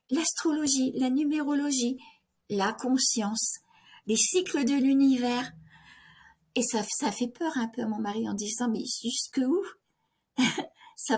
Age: 50-69